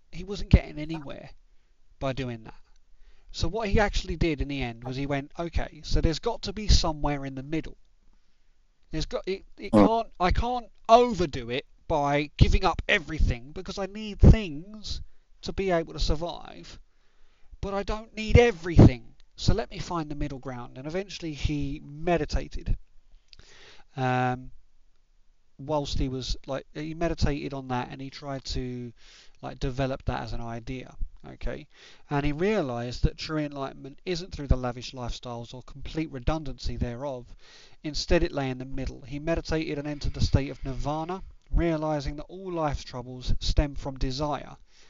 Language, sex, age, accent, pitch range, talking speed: English, male, 30-49, British, 125-160 Hz, 165 wpm